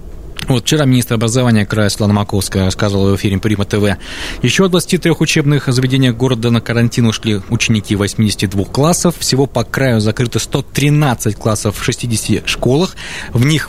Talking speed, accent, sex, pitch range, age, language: 150 wpm, native, male, 105-145 Hz, 20-39, Russian